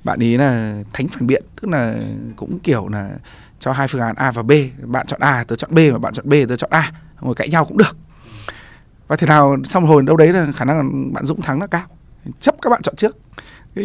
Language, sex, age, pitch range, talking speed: Vietnamese, male, 20-39, 115-145 Hz, 245 wpm